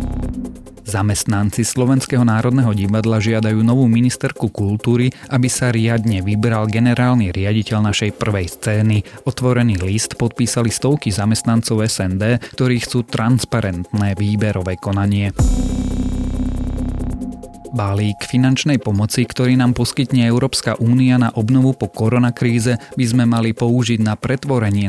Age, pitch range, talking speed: 30-49, 100-120 Hz, 110 wpm